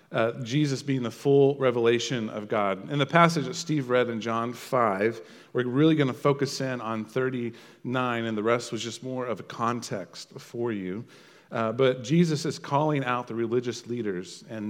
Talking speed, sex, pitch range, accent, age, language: 190 wpm, male, 115-140 Hz, American, 40-59, English